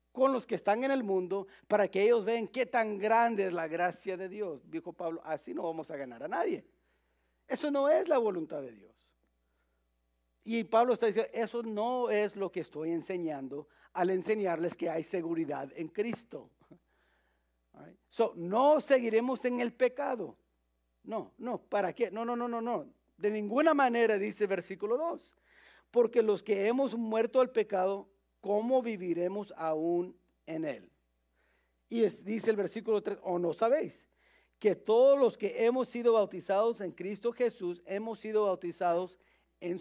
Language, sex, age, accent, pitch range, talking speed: English, male, 50-69, Mexican, 165-230 Hz, 165 wpm